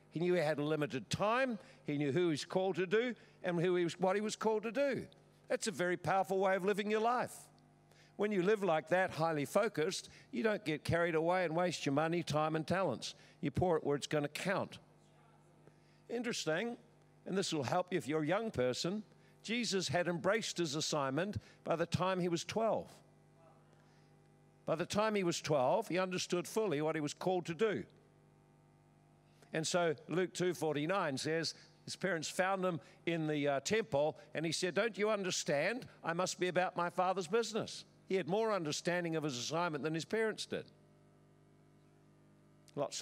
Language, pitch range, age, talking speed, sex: English, 155-195 Hz, 50-69, 185 wpm, male